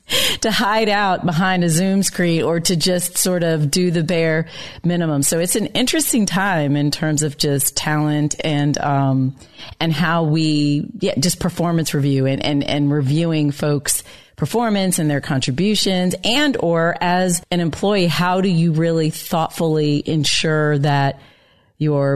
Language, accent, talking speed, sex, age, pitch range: English, American, 155 wpm, female, 40-59, 140-165 Hz